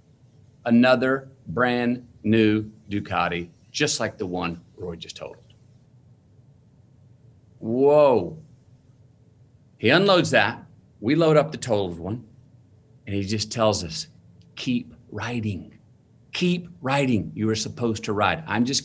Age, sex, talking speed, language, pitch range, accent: 40-59, male, 120 wpm, English, 85-120 Hz, American